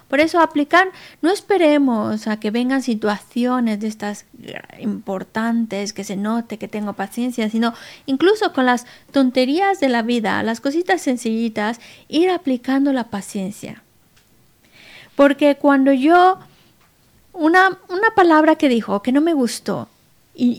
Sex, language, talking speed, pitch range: female, Spanish, 135 wpm, 220-285 Hz